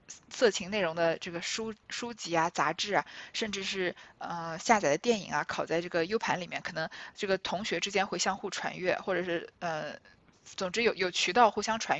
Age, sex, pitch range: 20-39, female, 190-270 Hz